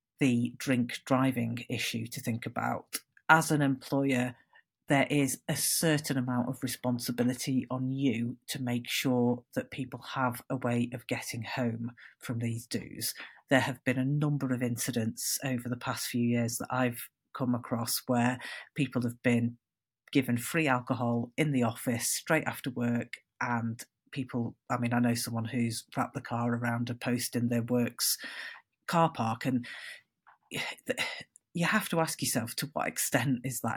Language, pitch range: English, 120-135 Hz